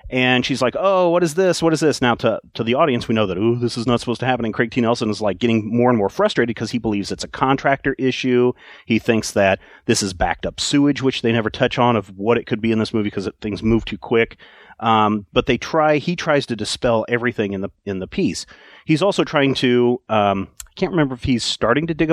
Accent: American